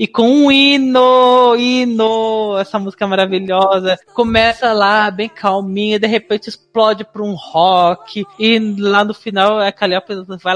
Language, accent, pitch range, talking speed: Portuguese, Brazilian, 200-265 Hz, 140 wpm